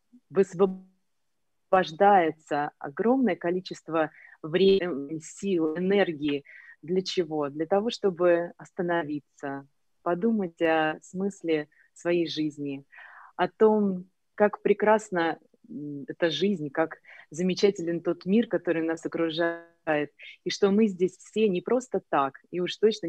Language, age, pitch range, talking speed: Russian, 20-39, 155-185 Hz, 105 wpm